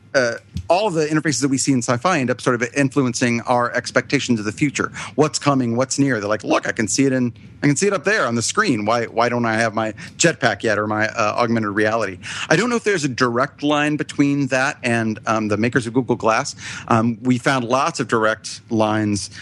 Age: 40-59